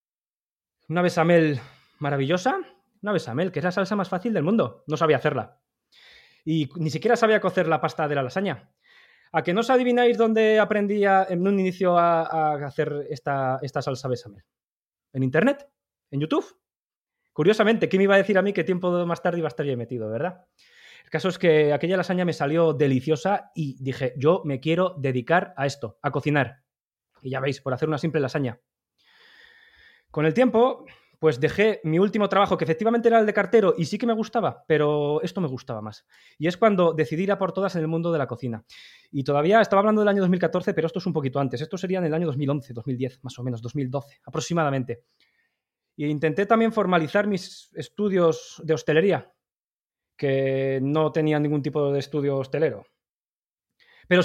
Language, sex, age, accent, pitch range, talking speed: Spanish, male, 20-39, Spanish, 145-200 Hz, 190 wpm